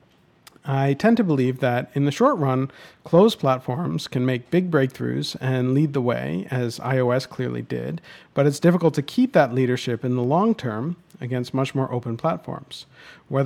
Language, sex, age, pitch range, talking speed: English, male, 40-59, 125-160 Hz, 175 wpm